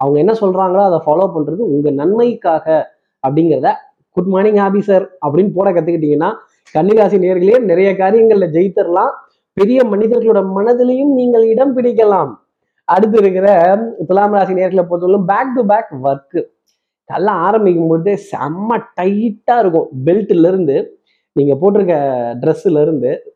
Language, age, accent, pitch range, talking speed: Tamil, 20-39, native, 150-205 Hz, 120 wpm